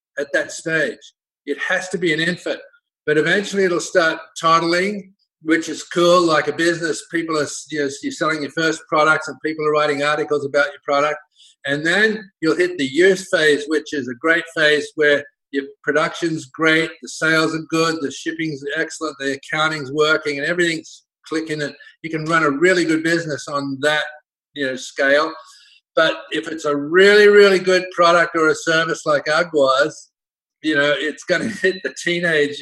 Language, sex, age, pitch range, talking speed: English, male, 50-69, 145-175 Hz, 180 wpm